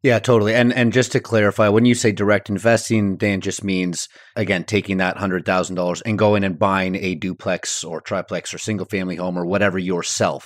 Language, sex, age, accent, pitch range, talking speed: English, male, 30-49, American, 95-115 Hz, 205 wpm